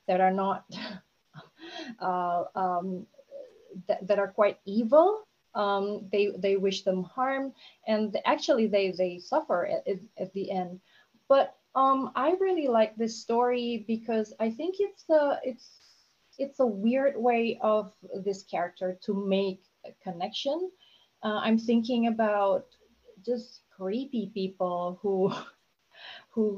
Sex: female